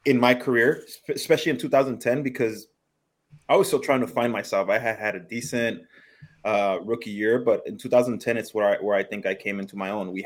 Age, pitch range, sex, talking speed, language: 20-39, 100-125 Hz, male, 215 wpm, English